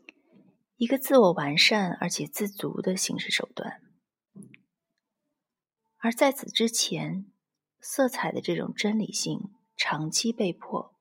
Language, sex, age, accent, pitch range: Chinese, female, 30-49, native, 185-265 Hz